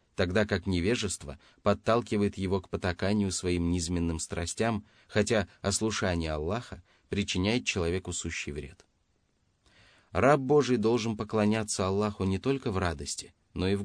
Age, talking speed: 30-49, 125 wpm